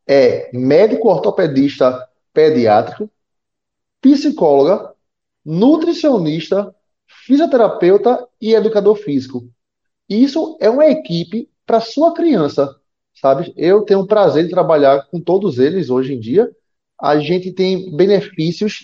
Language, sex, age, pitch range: Portuguese, male, 20-39, 170-235 Hz